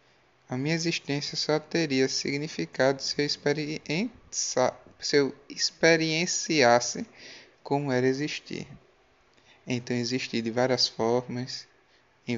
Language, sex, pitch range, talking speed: Portuguese, male, 125-145 Hz, 95 wpm